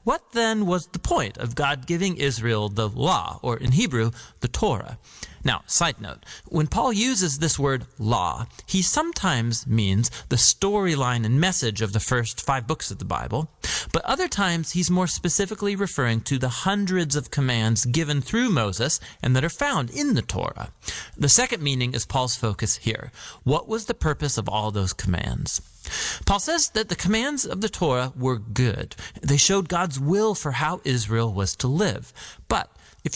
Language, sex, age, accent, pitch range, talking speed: English, male, 40-59, American, 120-180 Hz, 180 wpm